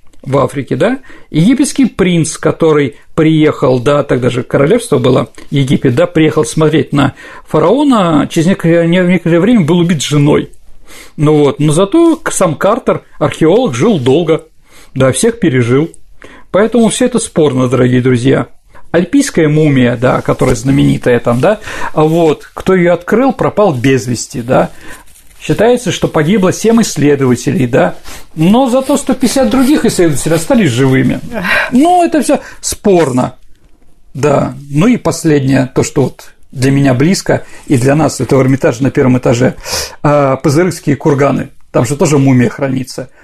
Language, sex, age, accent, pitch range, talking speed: Russian, male, 40-59, native, 140-195 Hz, 140 wpm